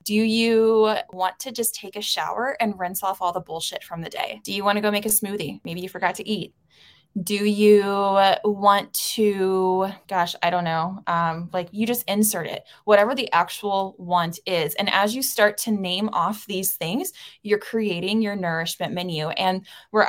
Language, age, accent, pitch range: English, 20-39, American, 185-220 Hz